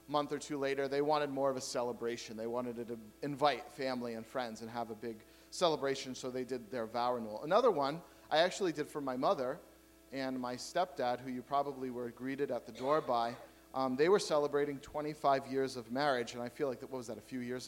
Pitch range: 125-150 Hz